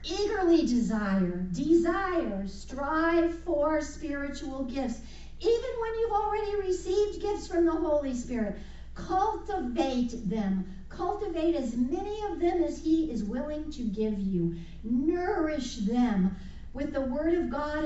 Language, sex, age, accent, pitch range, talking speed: English, female, 50-69, American, 240-340 Hz, 130 wpm